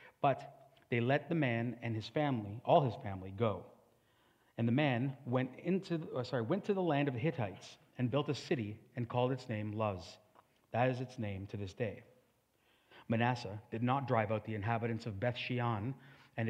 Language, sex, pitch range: English, male, 115-140 Hz